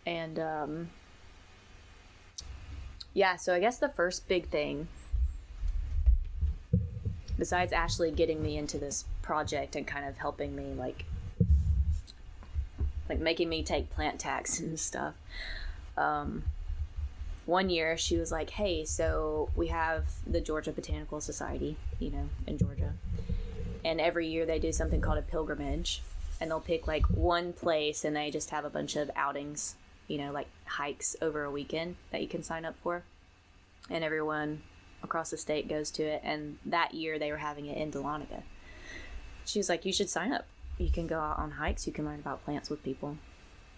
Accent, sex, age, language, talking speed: American, female, 20-39, English, 165 wpm